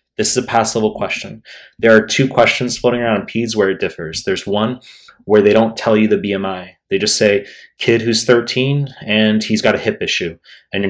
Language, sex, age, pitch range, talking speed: English, male, 30-49, 100-115 Hz, 210 wpm